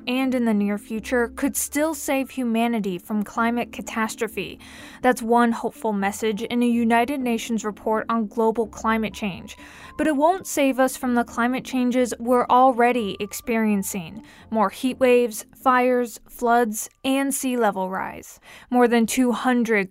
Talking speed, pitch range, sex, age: 150 wpm, 215-255 Hz, female, 20-39